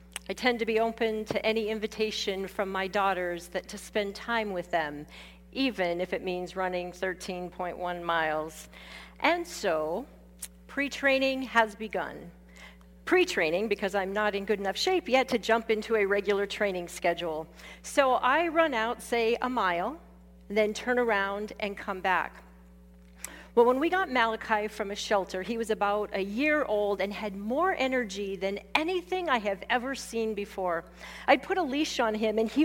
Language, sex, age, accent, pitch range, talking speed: English, female, 40-59, American, 185-245 Hz, 165 wpm